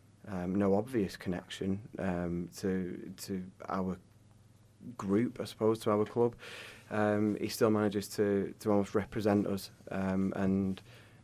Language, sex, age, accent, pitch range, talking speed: English, male, 30-49, British, 95-105 Hz, 130 wpm